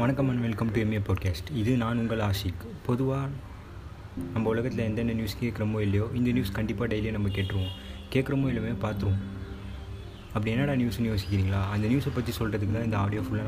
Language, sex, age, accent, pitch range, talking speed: Tamil, male, 20-39, native, 100-120 Hz, 170 wpm